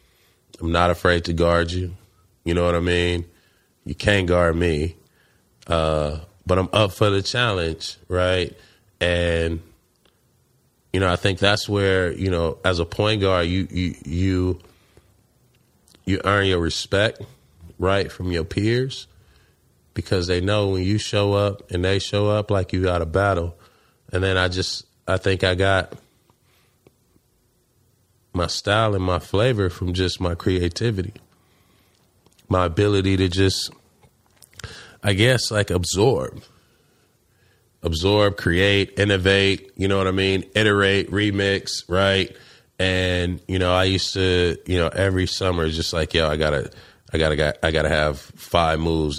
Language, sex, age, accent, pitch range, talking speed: English, male, 30-49, American, 85-100 Hz, 150 wpm